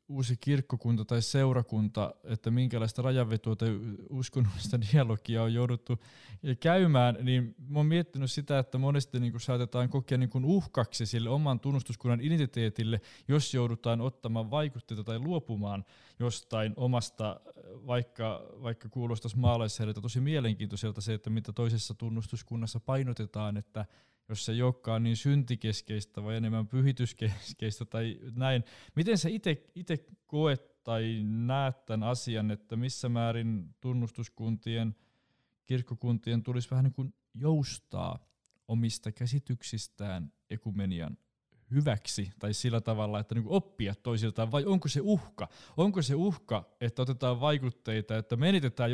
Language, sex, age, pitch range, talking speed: Finnish, male, 20-39, 110-130 Hz, 120 wpm